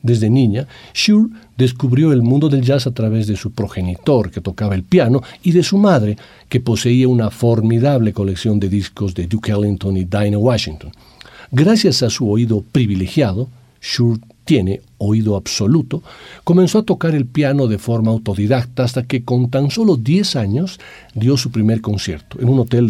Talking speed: 170 wpm